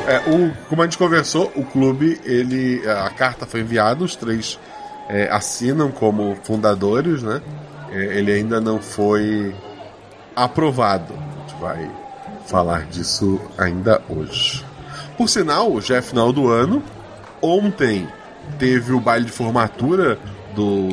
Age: 20-39